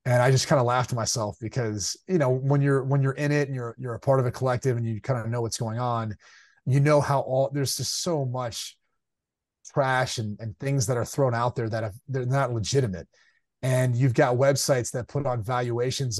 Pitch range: 125-150 Hz